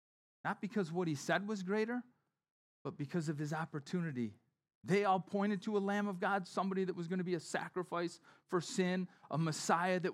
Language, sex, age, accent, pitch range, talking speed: English, male, 30-49, American, 135-190 Hz, 195 wpm